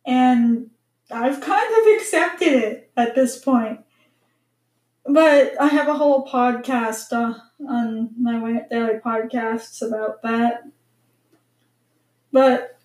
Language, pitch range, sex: English, 225-270 Hz, female